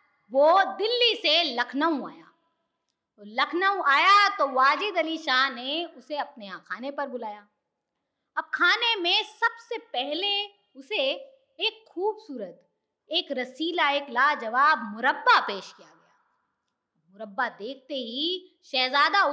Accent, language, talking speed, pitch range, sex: Indian, English, 115 wpm, 265-360 Hz, female